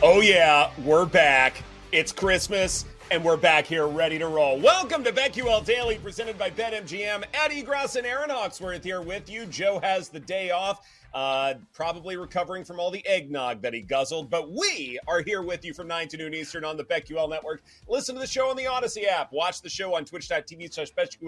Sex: male